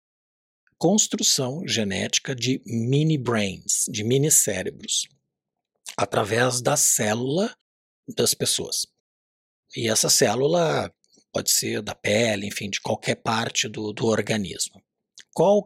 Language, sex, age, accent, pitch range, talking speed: Portuguese, male, 60-79, Brazilian, 110-150 Hz, 100 wpm